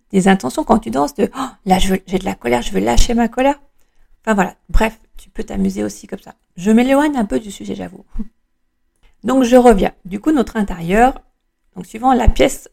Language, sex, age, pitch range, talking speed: French, female, 40-59, 190-240 Hz, 225 wpm